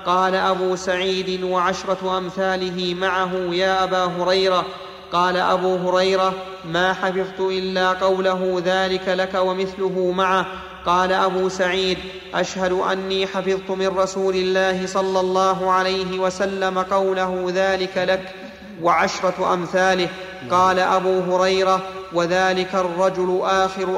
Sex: male